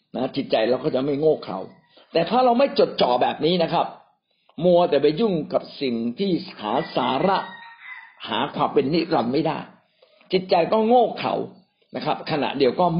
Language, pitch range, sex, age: Thai, 150-235 Hz, male, 60-79